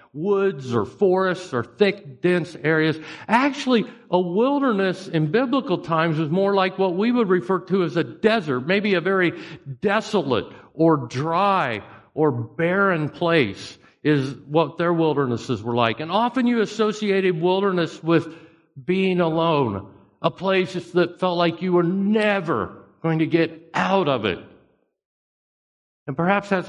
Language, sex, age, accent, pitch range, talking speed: English, male, 50-69, American, 135-195 Hz, 145 wpm